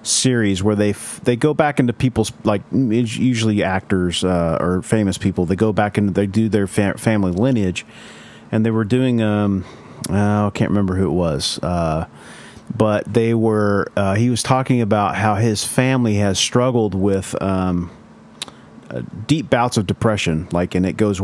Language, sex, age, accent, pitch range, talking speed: English, male, 40-59, American, 100-115 Hz, 165 wpm